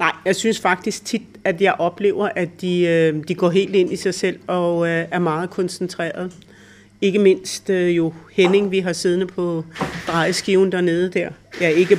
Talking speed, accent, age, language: 185 wpm, native, 60-79, Danish